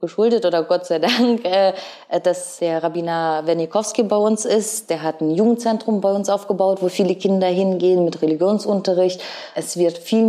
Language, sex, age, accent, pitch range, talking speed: German, female, 20-39, German, 170-215 Hz, 165 wpm